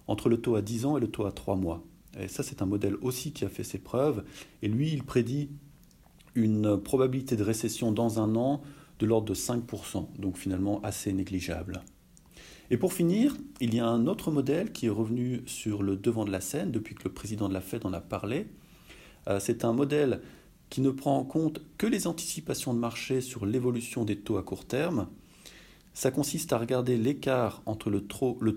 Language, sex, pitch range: English, male, 100-130 Hz